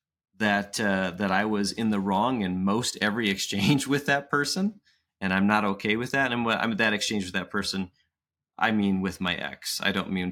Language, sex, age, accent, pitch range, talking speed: English, male, 30-49, American, 95-110 Hz, 220 wpm